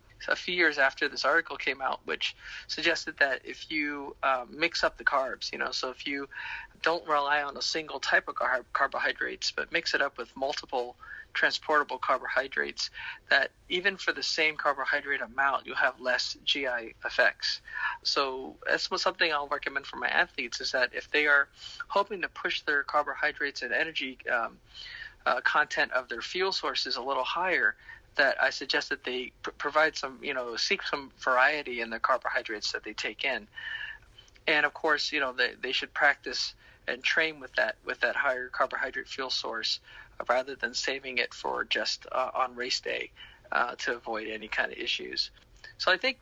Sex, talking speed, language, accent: male, 185 wpm, English, American